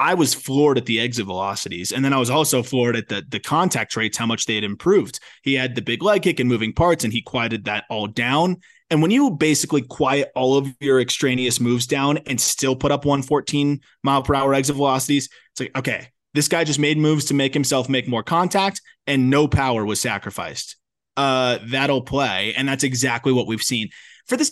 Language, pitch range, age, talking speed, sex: English, 115-140 Hz, 20-39, 220 wpm, male